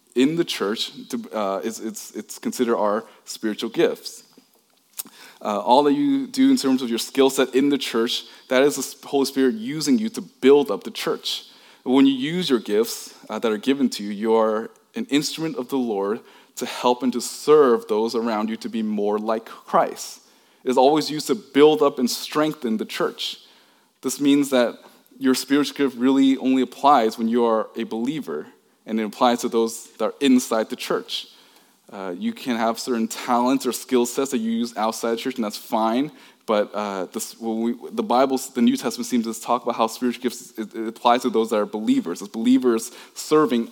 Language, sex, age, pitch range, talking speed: English, male, 20-39, 115-140 Hz, 200 wpm